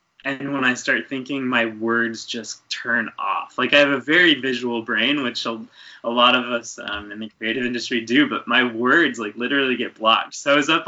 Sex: male